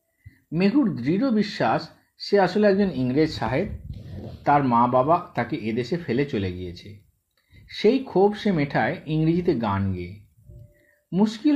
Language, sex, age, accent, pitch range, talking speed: Bengali, male, 50-69, native, 130-190 Hz, 125 wpm